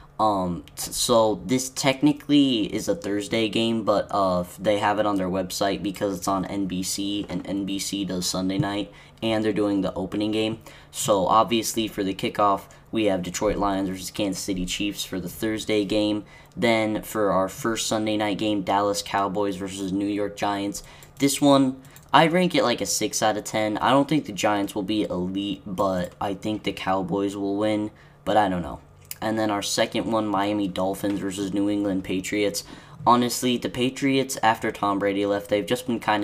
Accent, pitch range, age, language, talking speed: American, 95-115 Hz, 10-29, English, 185 wpm